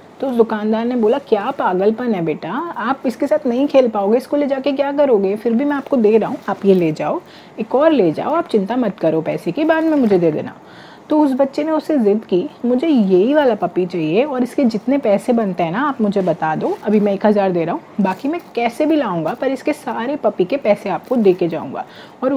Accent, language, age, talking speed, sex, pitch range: native, Hindi, 30-49, 240 wpm, female, 200-270 Hz